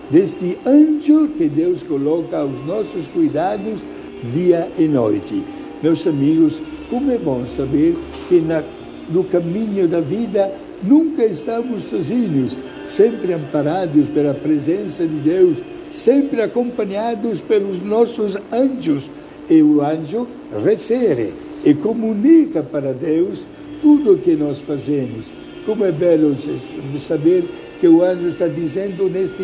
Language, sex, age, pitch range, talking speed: Portuguese, male, 60-79, 180-295 Hz, 120 wpm